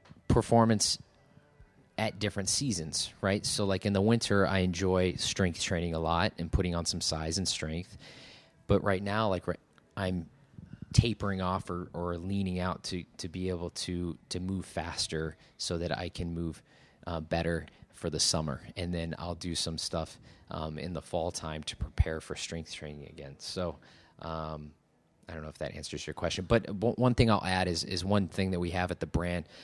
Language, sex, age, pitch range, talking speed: English, male, 30-49, 85-100 Hz, 190 wpm